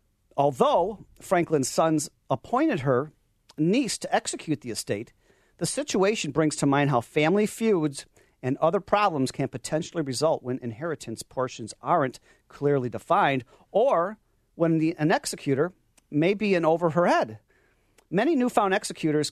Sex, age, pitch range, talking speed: male, 40-59, 145-205 Hz, 135 wpm